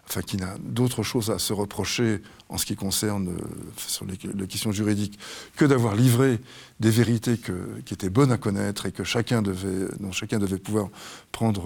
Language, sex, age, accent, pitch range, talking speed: French, male, 50-69, French, 100-125 Hz, 195 wpm